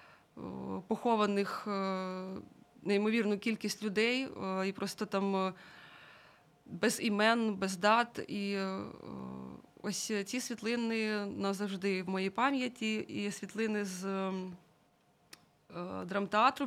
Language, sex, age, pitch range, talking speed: Ukrainian, female, 20-39, 195-225 Hz, 85 wpm